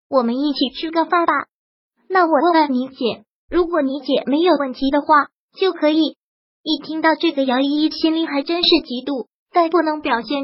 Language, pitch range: Chinese, 270-330 Hz